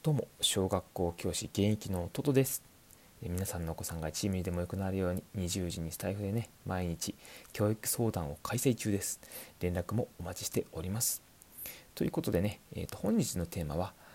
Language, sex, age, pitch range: Japanese, male, 30-49, 90-125 Hz